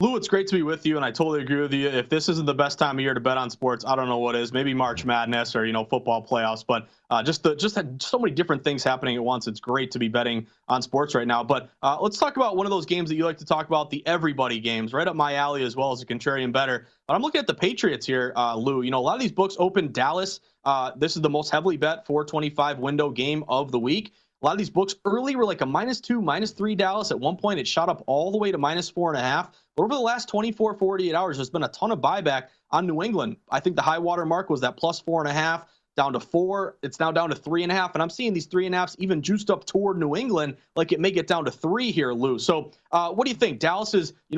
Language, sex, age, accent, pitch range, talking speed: English, male, 30-49, American, 135-185 Hz, 290 wpm